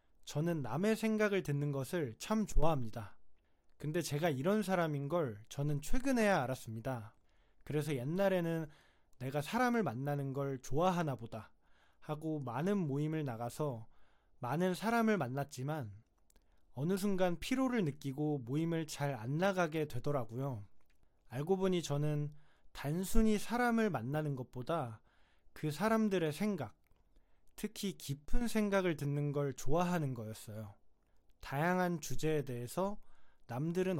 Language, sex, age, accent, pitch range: Korean, male, 20-39, native, 130-185 Hz